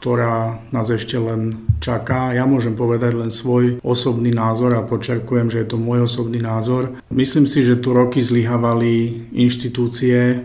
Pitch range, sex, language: 115-125 Hz, male, Slovak